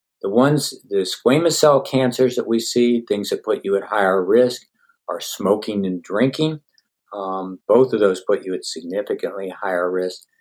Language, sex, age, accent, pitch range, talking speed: English, male, 50-69, American, 95-120 Hz, 175 wpm